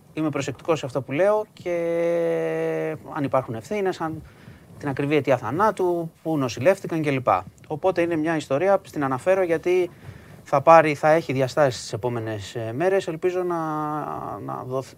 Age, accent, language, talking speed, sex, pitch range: 30-49, native, Greek, 150 wpm, male, 120-155 Hz